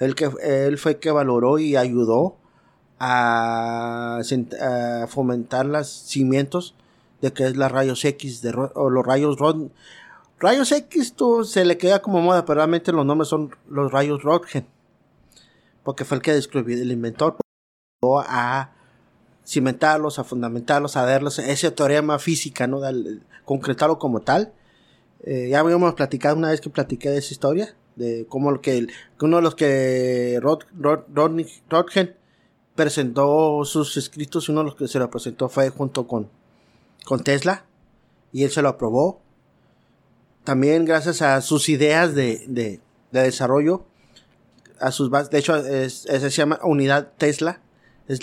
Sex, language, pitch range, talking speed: male, English, 130-155 Hz, 160 wpm